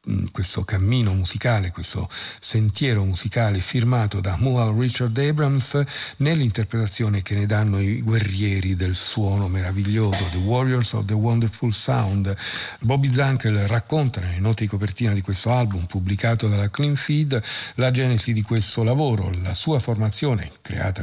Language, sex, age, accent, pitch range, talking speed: Italian, male, 50-69, native, 95-120 Hz, 145 wpm